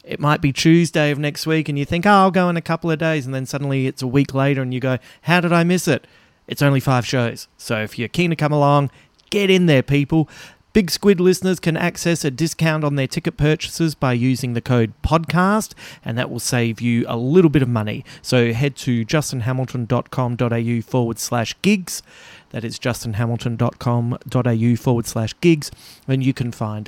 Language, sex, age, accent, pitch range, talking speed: English, male, 30-49, Australian, 120-160 Hz, 205 wpm